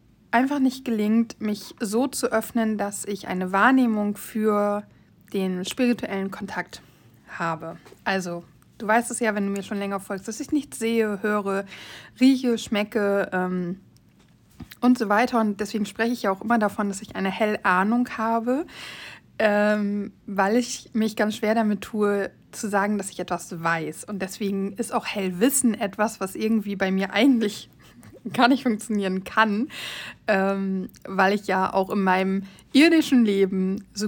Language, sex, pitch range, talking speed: German, female, 195-235 Hz, 160 wpm